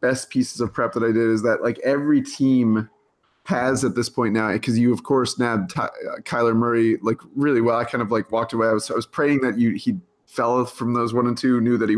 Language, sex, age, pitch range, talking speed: English, male, 20-39, 110-130 Hz, 250 wpm